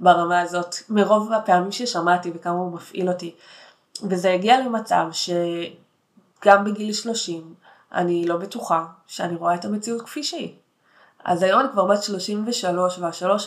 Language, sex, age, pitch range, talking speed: Hebrew, female, 20-39, 175-205 Hz, 140 wpm